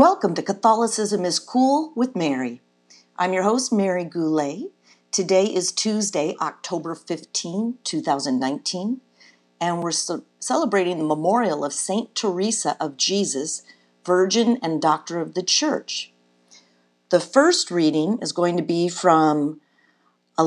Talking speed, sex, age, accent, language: 125 wpm, female, 50-69, American, English